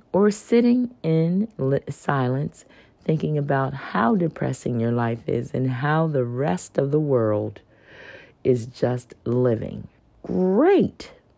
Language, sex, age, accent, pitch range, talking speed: English, female, 50-69, American, 115-145 Hz, 115 wpm